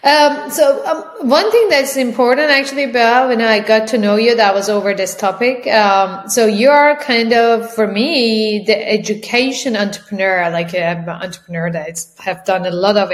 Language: Persian